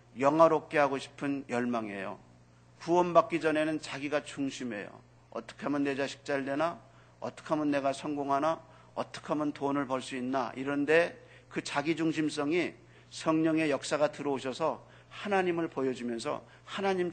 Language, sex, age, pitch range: Korean, male, 40-59, 125-170 Hz